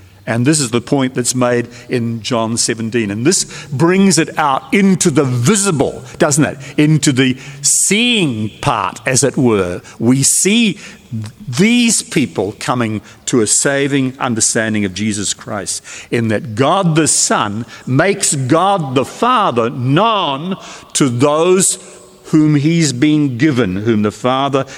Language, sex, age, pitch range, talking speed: English, male, 50-69, 115-165 Hz, 145 wpm